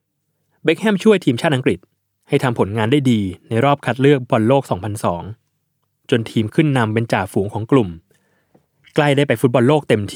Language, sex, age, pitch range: Thai, male, 20-39, 105-140 Hz